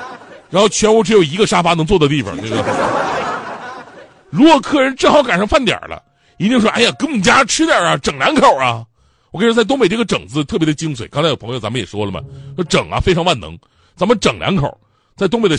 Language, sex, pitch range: Chinese, male, 125-195 Hz